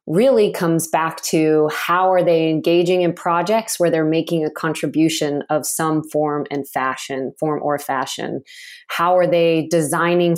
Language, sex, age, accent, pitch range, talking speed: English, female, 20-39, American, 160-175 Hz, 155 wpm